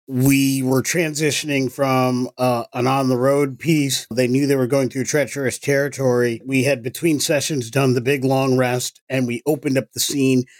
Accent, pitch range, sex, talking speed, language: American, 130-155 Hz, male, 175 wpm, English